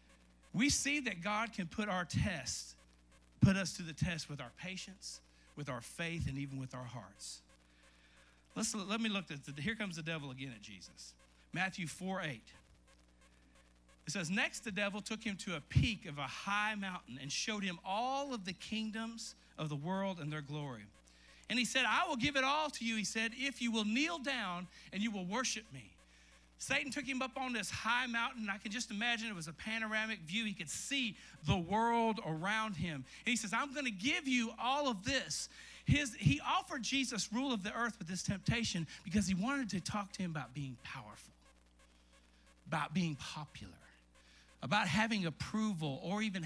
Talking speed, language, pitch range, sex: 200 wpm, English, 130-225 Hz, male